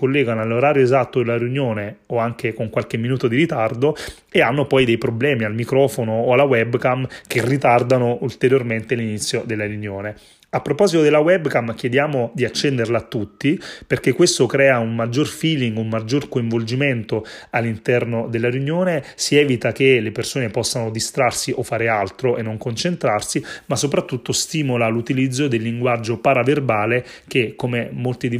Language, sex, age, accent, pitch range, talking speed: Italian, male, 30-49, native, 115-135 Hz, 155 wpm